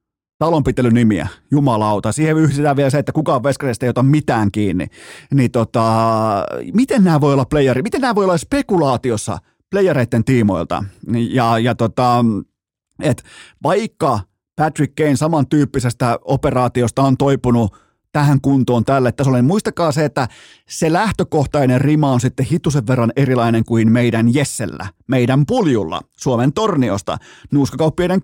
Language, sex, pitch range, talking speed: Finnish, male, 115-155 Hz, 135 wpm